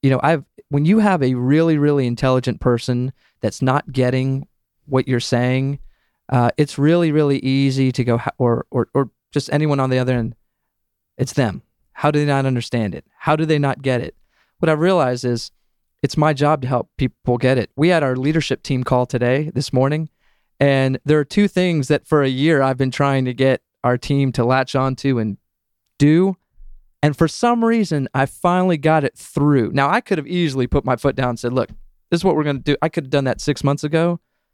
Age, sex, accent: 30-49, male, American